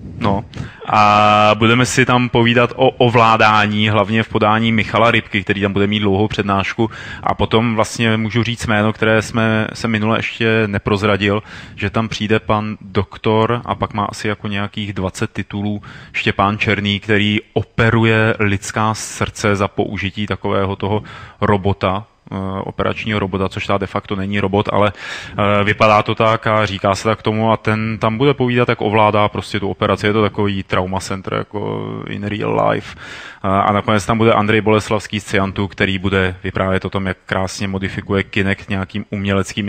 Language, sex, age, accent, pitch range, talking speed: Czech, male, 20-39, native, 100-120 Hz, 170 wpm